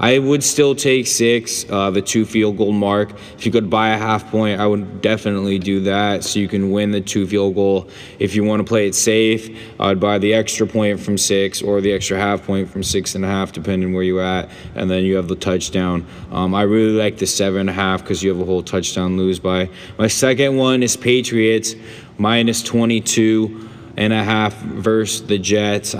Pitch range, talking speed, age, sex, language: 95-110 Hz, 215 wpm, 20-39, male, English